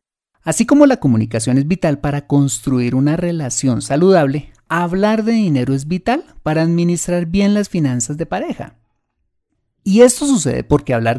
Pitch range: 130-185 Hz